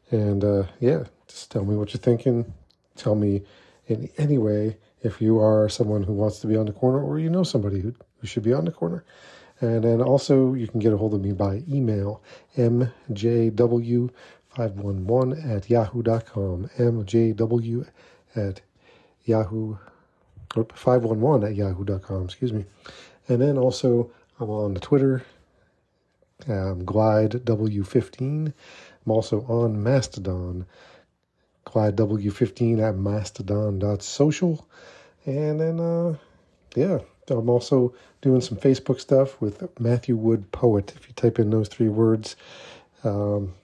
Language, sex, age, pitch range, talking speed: English, male, 40-59, 105-130 Hz, 140 wpm